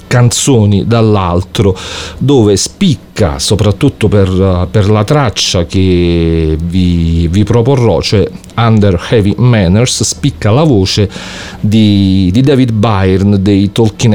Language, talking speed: English, 110 wpm